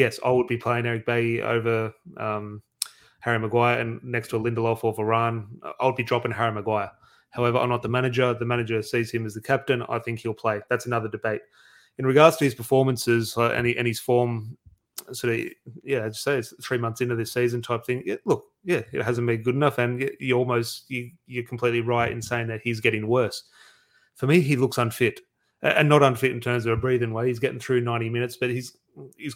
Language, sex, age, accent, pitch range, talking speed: English, male, 30-49, Australian, 115-125 Hz, 225 wpm